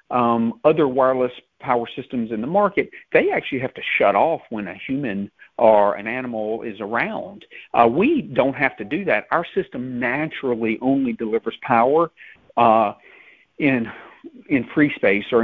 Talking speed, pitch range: 160 wpm, 115-140 Hz